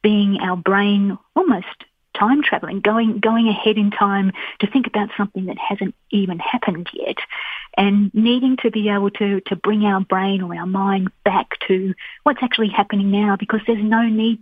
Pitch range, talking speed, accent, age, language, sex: 190-225 Hz, 175 wpm, Australian, 30-49, English, female